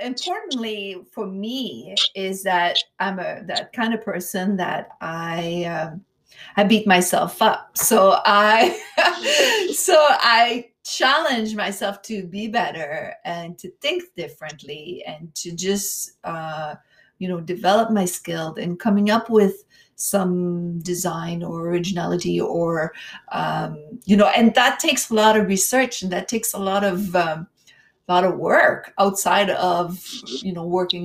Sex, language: female, English